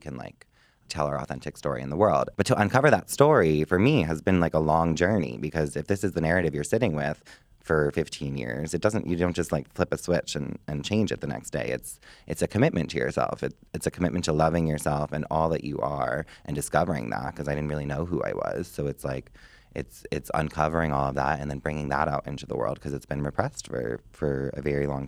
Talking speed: 250 wpm